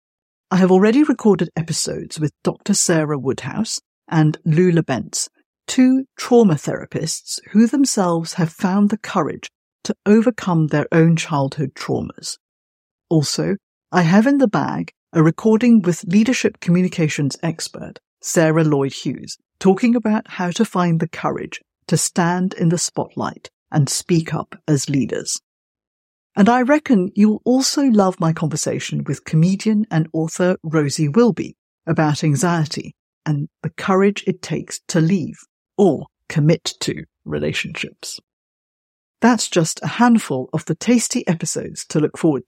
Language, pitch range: English, 155-215 Hz